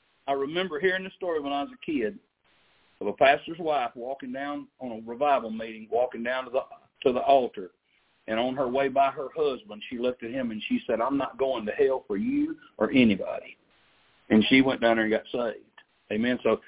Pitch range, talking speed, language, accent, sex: 135-220 Hz, 215 wpm, English, American, male